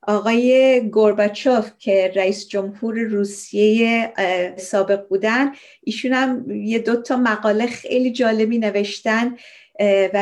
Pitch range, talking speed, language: 200-250 Hz, 100 wpm, Persian